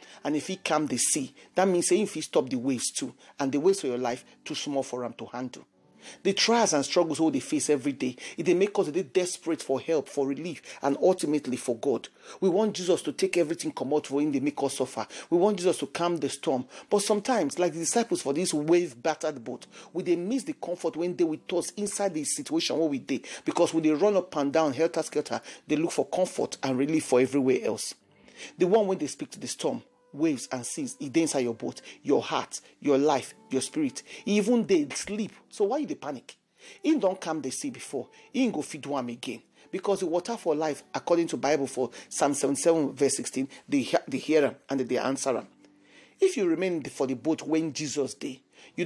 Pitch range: 140-195 Hz